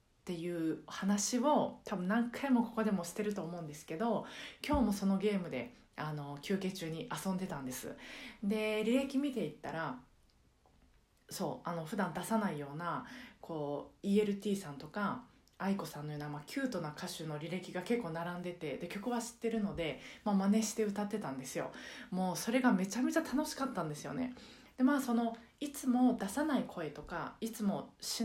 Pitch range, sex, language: 175-245 Hz, female, Japanese